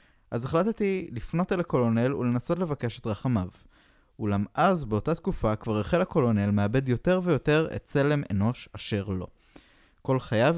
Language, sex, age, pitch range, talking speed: Hebrew, male, 20-39, 105-150 Hz, 145 wpm